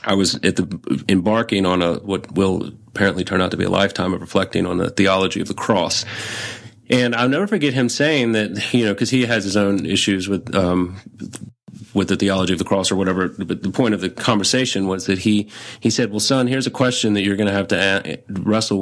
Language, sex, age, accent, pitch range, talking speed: English, male, 30-49, American, 95-115 Hz, 230 wpm